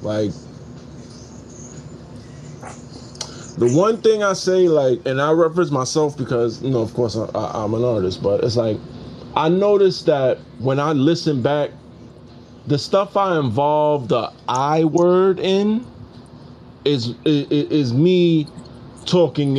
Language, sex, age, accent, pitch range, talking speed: English, male, 20-39, American, 120-165 Hz, 135 wpm